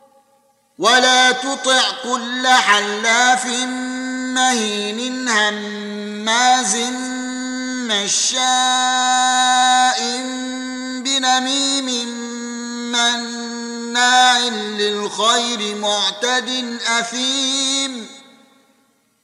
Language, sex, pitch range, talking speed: Arabic, male, 245-265 Hz, 35 wpm